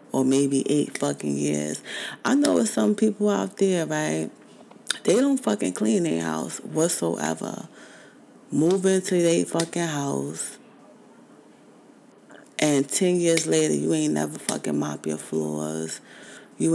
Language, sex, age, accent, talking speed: English, female, 20-39, American, 130 wpm